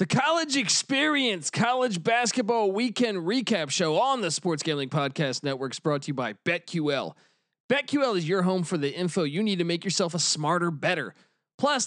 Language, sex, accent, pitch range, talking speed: English, male, American, 155-220 Hz, 175 wpm